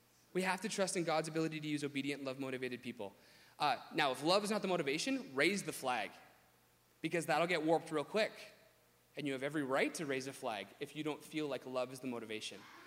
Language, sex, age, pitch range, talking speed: English, male, 30-49, 140-195 Hz, 225 wpm